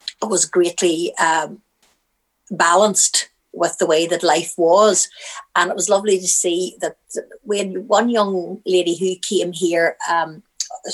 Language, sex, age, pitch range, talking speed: English, female, 60-79, 170-200 Hz, 135 wpm